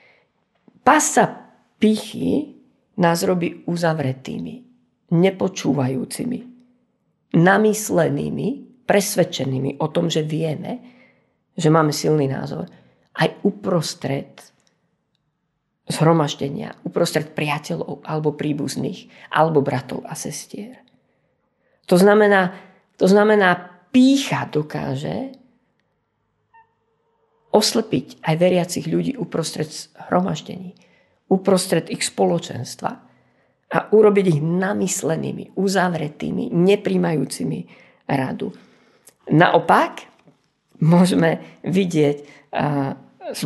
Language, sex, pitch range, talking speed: Slovak, female, 160-210 Hz, 75 wpm